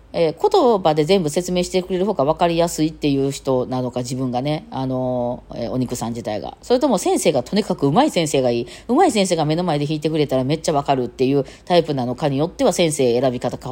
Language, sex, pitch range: Japanese, female, 130-205 Hz